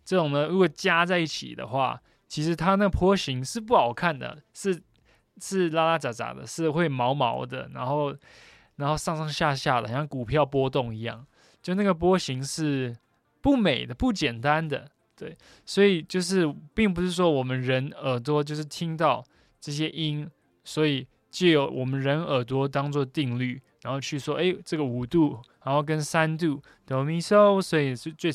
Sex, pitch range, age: male, 125-165 Hz, 20-39